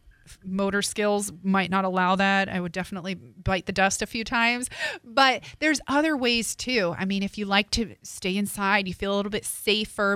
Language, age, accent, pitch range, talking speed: English, 30-49, American, 195-230 Hz, 200 wpm